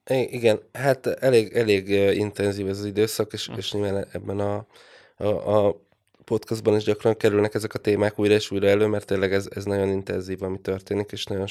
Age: 20-39